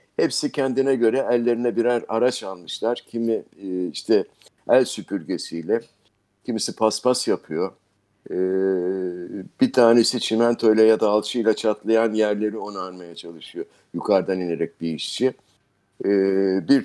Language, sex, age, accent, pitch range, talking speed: Turkish, male, 60-79, native, 105-135 Hz, 105 wpm